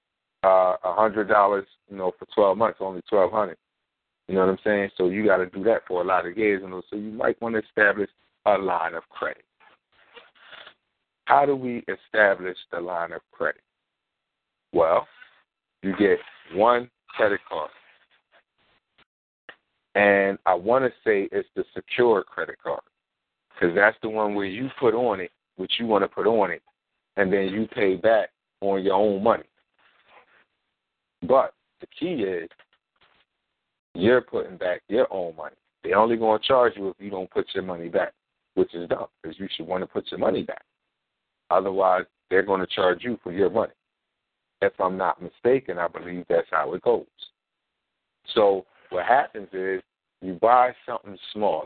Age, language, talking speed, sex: 50-69, English, 170 wpm, male